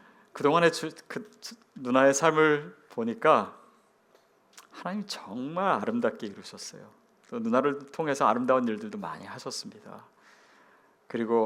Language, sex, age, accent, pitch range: Korean, male, 40-59, native, 145-220 Hz